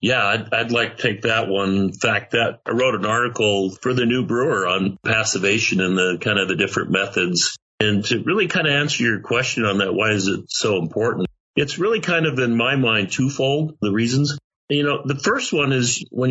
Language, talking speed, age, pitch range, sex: English, 220 wpm, 50-69, 100-125 Hz, male